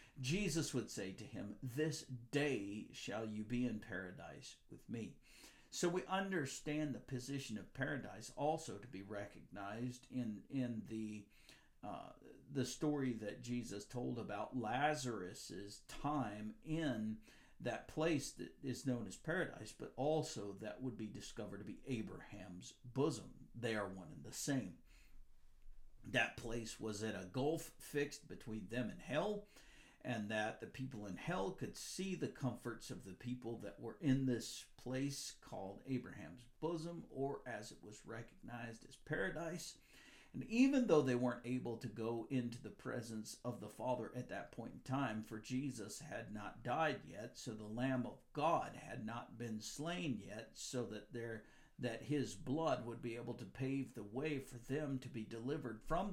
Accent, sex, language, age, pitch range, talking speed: American, male, English, 50-69, 110-140 Hz, 165 wpm